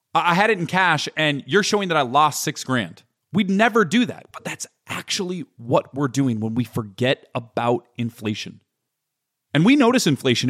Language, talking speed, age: English, 185 wpm, 30-49